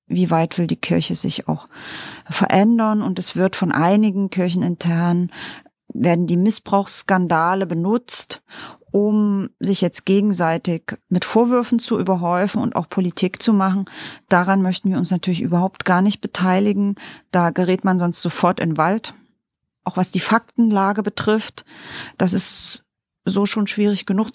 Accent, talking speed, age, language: German, 145 wpm, 40-59, German